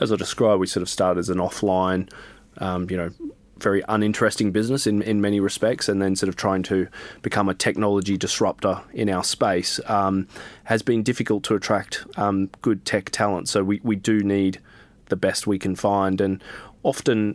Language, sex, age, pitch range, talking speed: English, male, 20-39, 95-110 Hz, 190 wpm